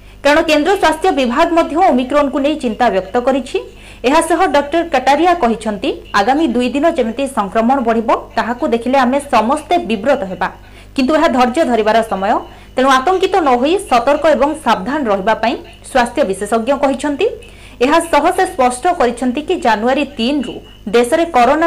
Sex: female